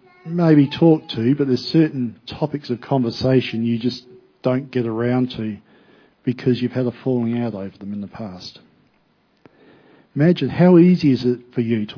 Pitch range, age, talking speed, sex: 110-135 Hz, 50-69, 170 wpm, male